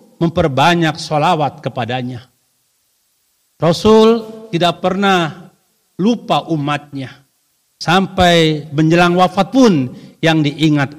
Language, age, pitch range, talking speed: Indonesian, 50-69, 140-190 Hz, 75 wpm